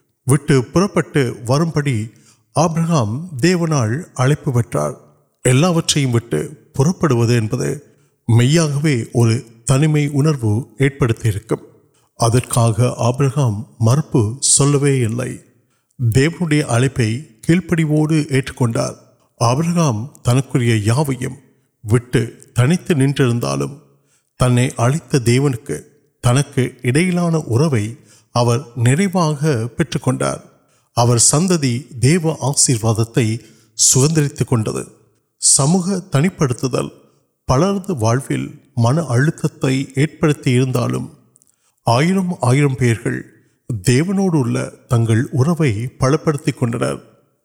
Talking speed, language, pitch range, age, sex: 45 wpm, Urdu, 120-150 Hz, 50-69, male